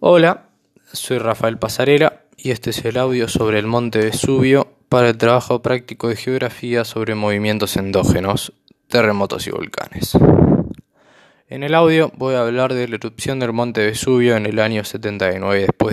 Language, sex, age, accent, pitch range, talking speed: Spanish, male, 20-39, Argentinian, 110-135 Hz, 155 wpm